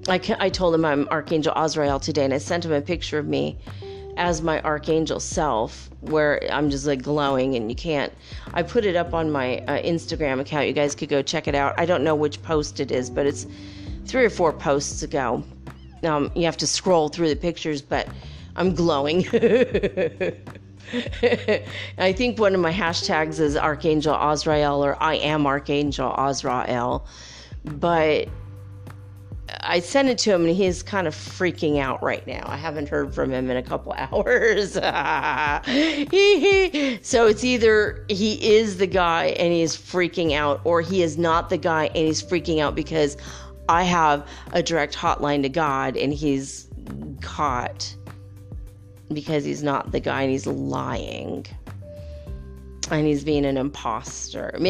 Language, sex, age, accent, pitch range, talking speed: English, female, 30-49, American, 120-175 Hz, 165 wpm